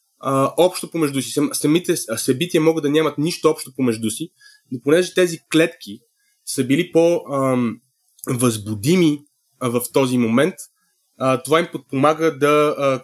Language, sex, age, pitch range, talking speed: Bulgarian, male, 20-39, 125-160 Hz, 140 wpm